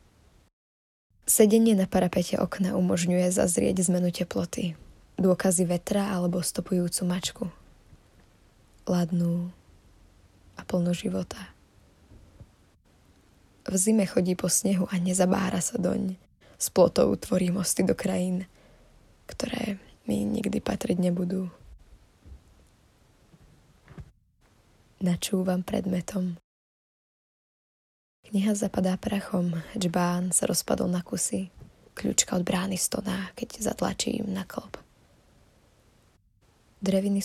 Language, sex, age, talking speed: Slovak, female, 20-39, 90 wpm